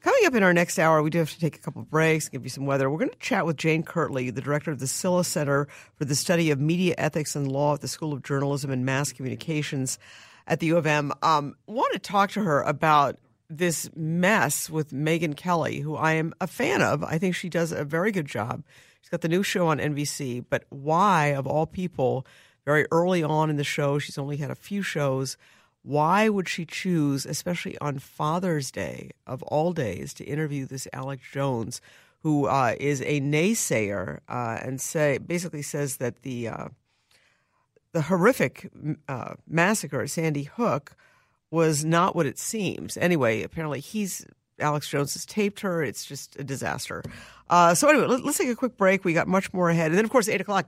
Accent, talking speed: American, 210 wpm